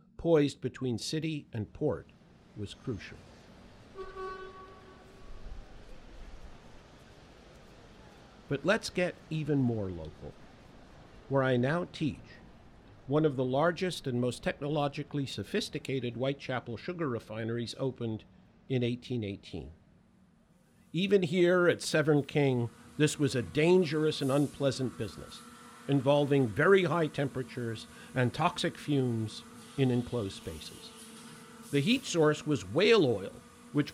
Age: 50-69